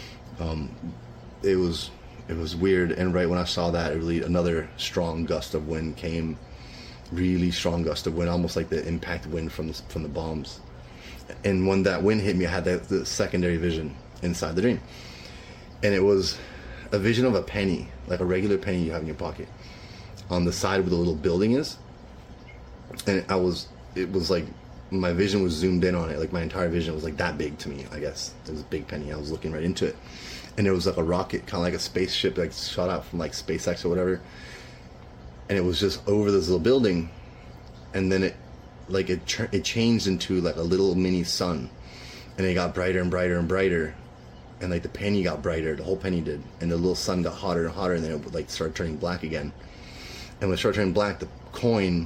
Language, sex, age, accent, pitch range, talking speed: English, male, 30-49, American, 80-95 Hz, 225 wpm